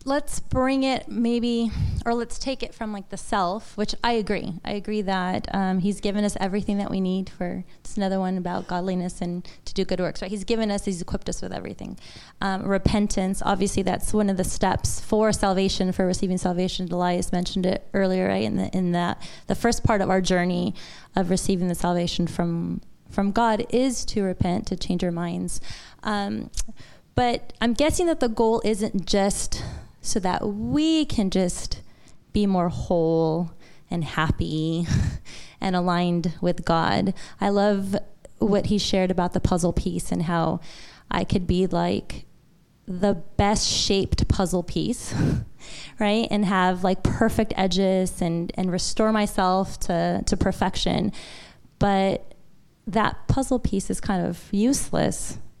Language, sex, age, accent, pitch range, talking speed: English, female, 20-39, American, 180-210 Hz, 165 wpm